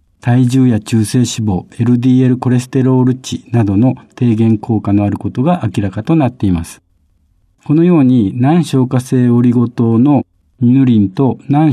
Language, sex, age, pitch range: Japanese, male, 50-69, 110-140 Hz